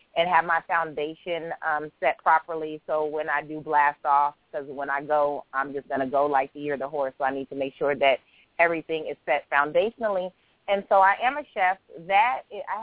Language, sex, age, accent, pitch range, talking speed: English, female, 30-49, American, 150-190 Hz, 220 wpm